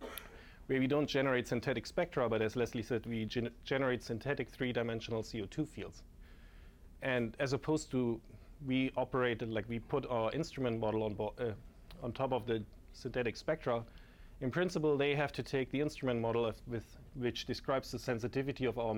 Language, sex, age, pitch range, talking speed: English, male, 30-49, 110-130 Hz, 170 wpm